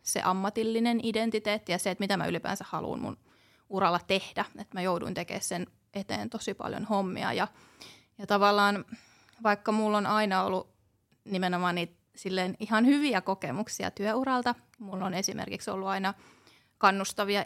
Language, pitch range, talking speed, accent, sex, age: Finnish, 185-225 Hz, 150 wpm, native, female, 30-49